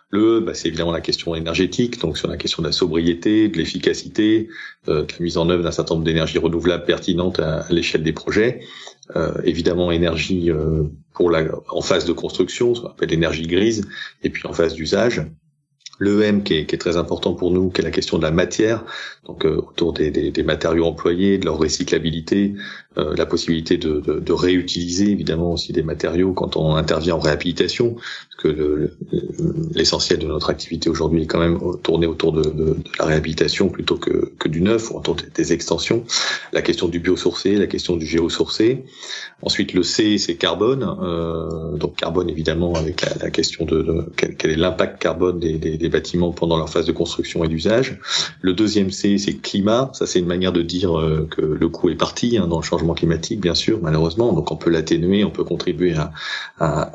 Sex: male